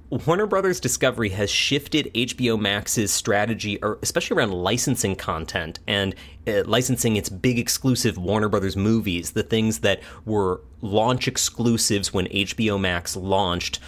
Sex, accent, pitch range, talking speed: male, American, 95-120 Hz, 130 wpm